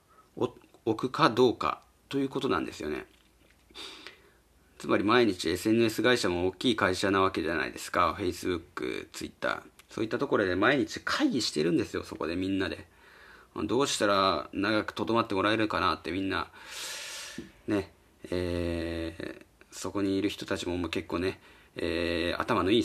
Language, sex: Japanese, male